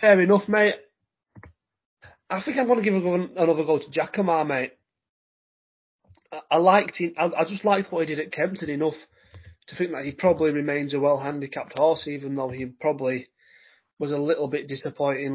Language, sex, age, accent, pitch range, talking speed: English, male, 30-49, British, 130-160 Hz, 190 wpm